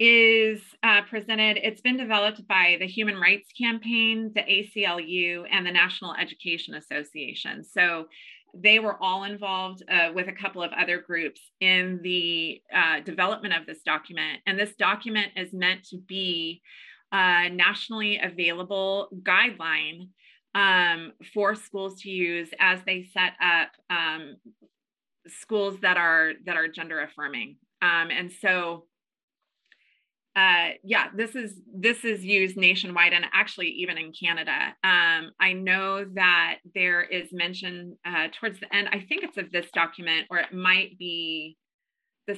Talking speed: 145 wpm